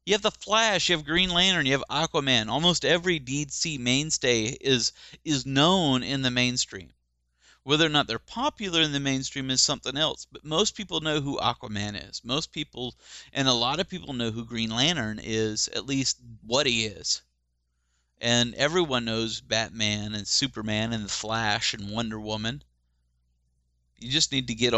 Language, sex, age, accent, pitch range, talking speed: English, male, 40-59, American, 110-140 Hz, 175 wpm